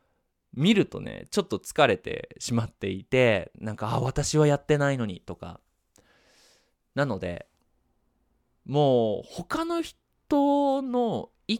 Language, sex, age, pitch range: Japanese, male, 20-39, 100-145 Hz